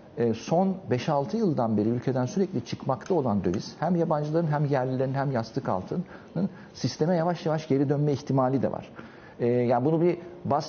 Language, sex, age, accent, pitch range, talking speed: Turkish, male, 60-79, native, 120-175 Hz, 155 wpm